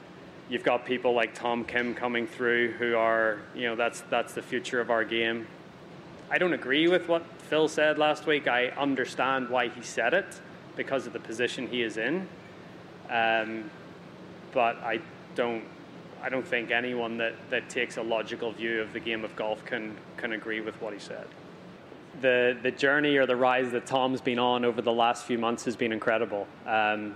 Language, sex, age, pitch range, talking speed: English, male, 20-39, 115-130 Hz, 190 wpm